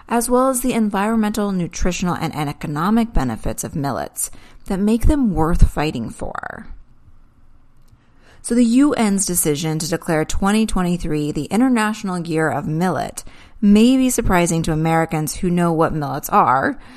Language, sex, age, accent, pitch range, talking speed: English, female, 30-49, American, 160-215 Hz, 140 wpm